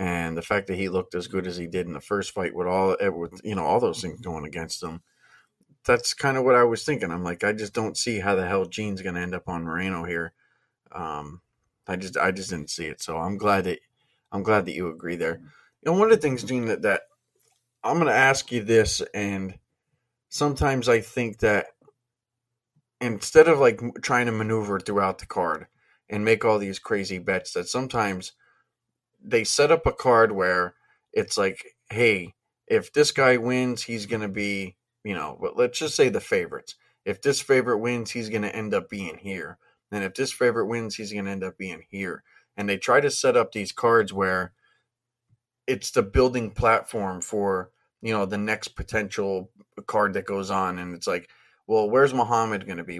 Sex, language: male, English